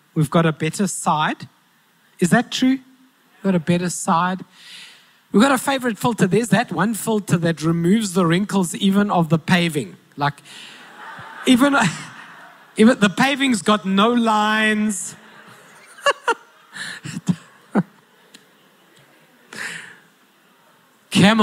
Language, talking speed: English, 105 wpm